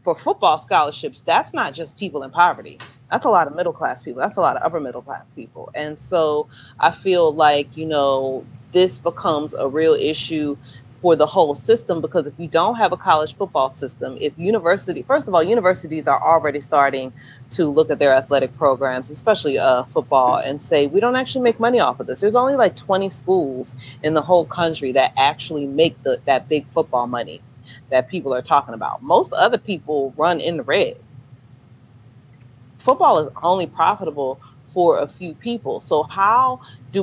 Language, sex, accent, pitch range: English, female, American, 135-185 Hz